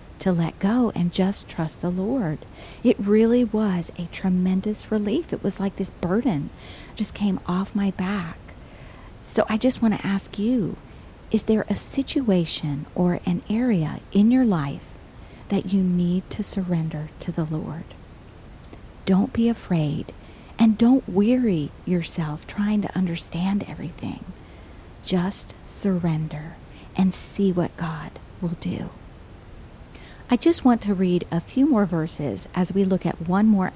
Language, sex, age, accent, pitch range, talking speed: English, female, 40-59, American, 165-205 Hz, 150 wpm